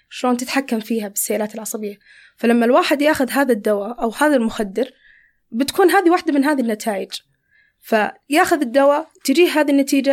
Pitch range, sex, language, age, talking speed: 225-295 Hz, female, Arabic, 20-39, 140 wpm